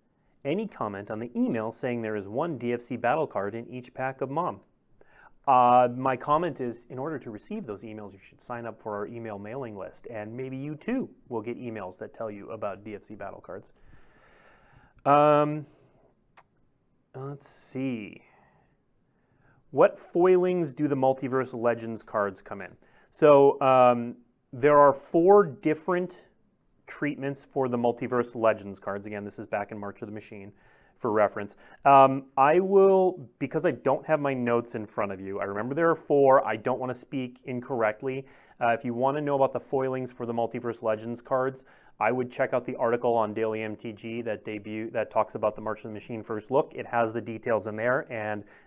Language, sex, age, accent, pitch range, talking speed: English, male, 30-49, American, 110-135 Hz, 185 wpm